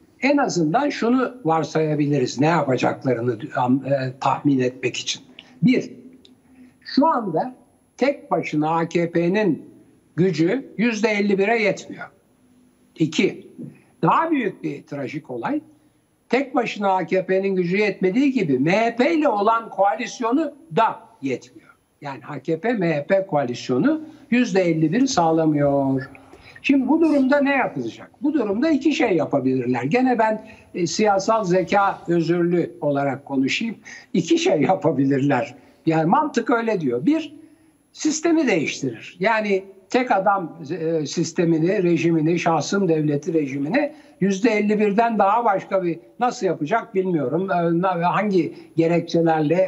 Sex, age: male, 60-79